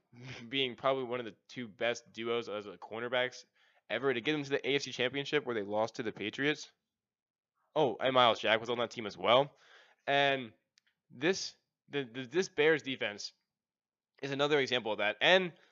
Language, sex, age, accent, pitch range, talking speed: English, male, 10-29, American, 115-140 Hz, 185 wpm